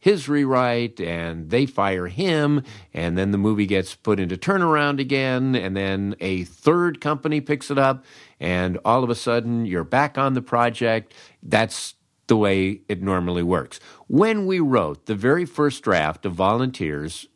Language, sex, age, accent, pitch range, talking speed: English, male, 50-69, American, 100-140 Hz, 165 wpm